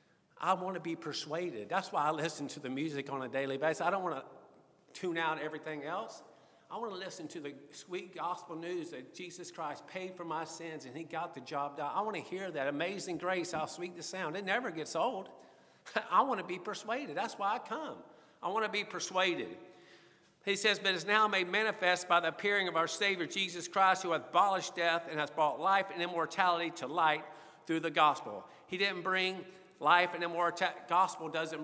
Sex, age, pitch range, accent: male, 50-69, 155-185 Hz, American